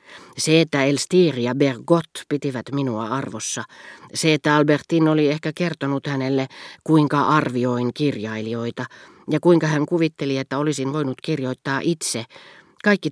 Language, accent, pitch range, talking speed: Finnish, native, 125-160 Hz, 130 wpm